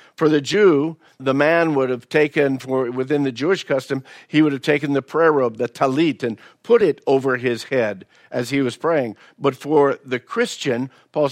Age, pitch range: 50-69, 130-170 Hz